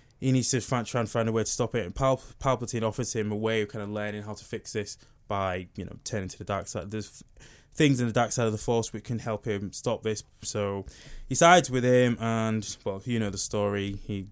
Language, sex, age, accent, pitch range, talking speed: English, male, 20-39, British, 105-130 Hz, 250 wpm